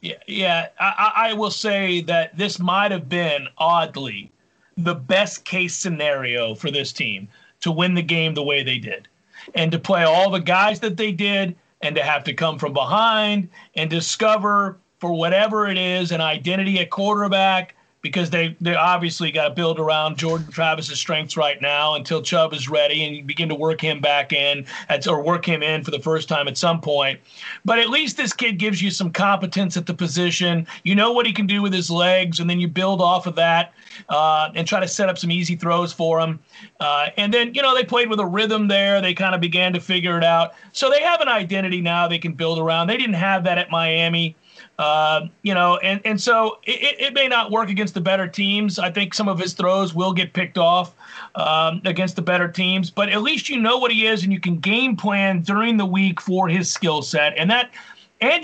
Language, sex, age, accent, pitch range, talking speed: English, male, 40-59, American, 165-205 Hz, 225 wpm